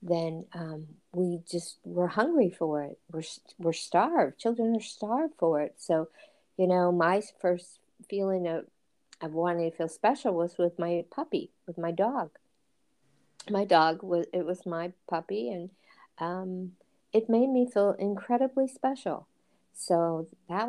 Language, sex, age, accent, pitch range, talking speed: English, female, 50-69, American, 165-195 Hz, 150 wpm